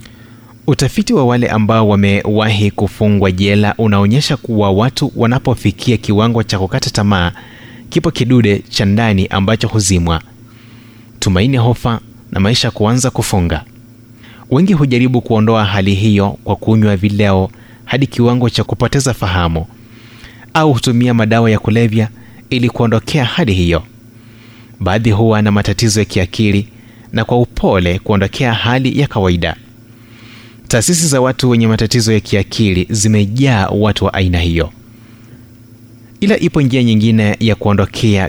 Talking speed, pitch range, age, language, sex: 125 wpm, 105-120 Hz, 30-49, Swahili, male